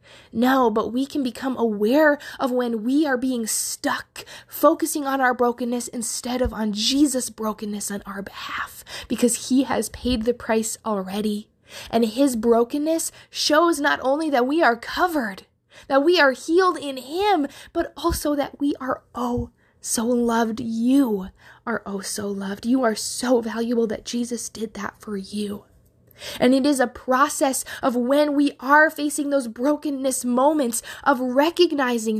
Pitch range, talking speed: 220-280 Hz, 160 wpm